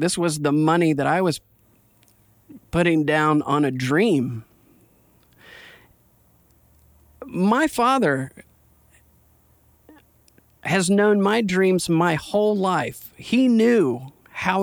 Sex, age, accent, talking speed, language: male, 40-59, American, 100 wpm, English